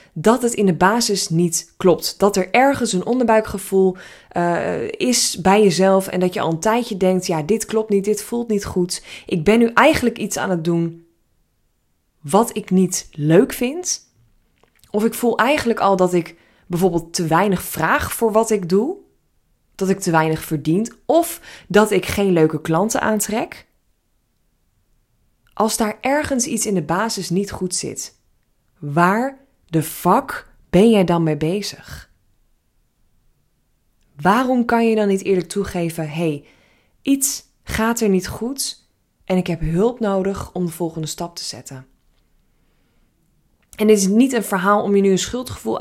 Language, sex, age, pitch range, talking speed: Dutch, female, 20-39, 170-220 Hz, 165 wpm